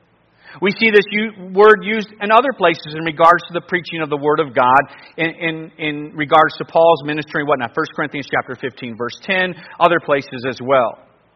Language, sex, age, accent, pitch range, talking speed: English, male, 40-59, American, 150-200 Hz, 190 wpm